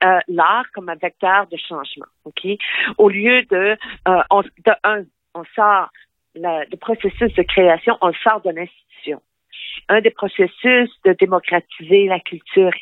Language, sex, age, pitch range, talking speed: French, female, 50-69, 170-215 Hz, 155 wpm